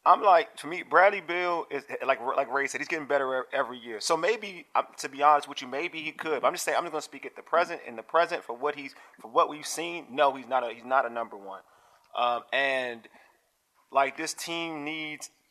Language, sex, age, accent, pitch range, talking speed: English, male, 30-49, American, 125-150 Hz, 245 wpm